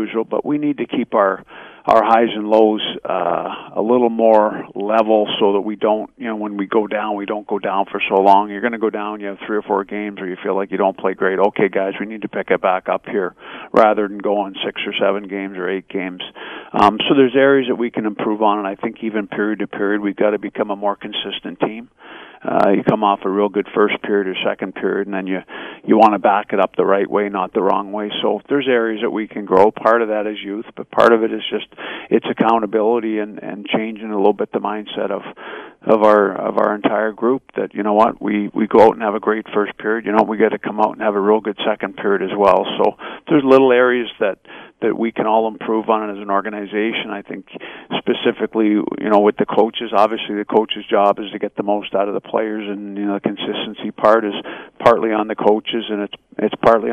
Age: 50-69